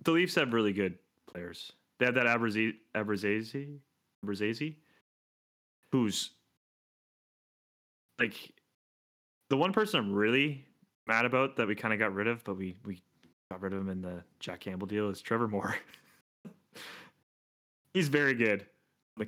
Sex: male